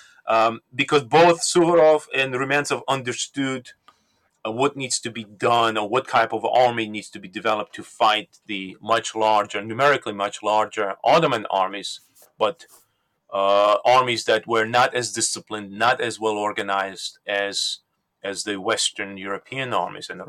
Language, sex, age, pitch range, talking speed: English, male, 30-49, 105-125 Hz, 155 wpm